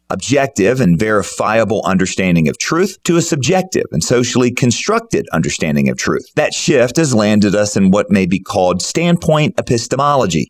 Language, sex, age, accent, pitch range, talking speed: English, male, 40-59, American, 100-155 Hz, 155 wpm